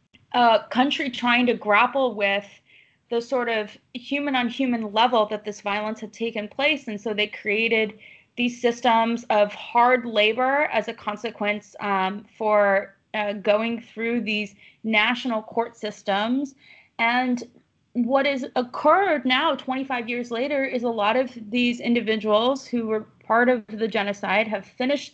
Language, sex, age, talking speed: English, female, 20-39, 145 wpm